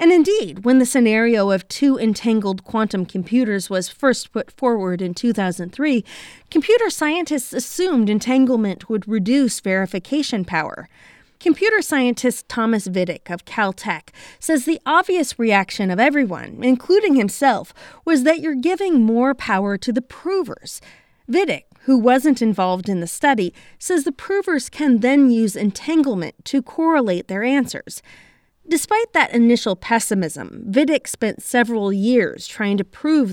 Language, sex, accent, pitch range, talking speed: English, female, American, 205-295 Hz, 135 wpm